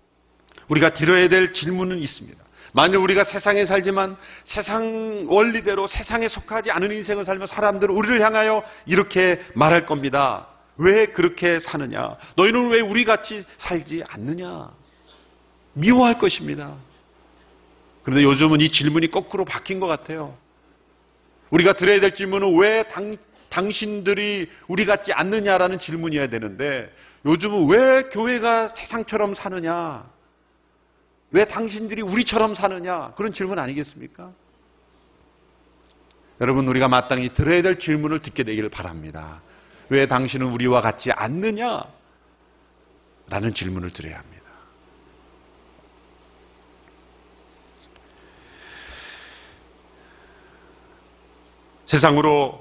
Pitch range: 135-205 Hz